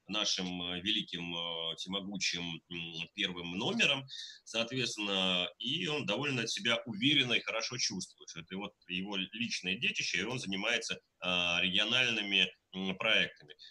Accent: native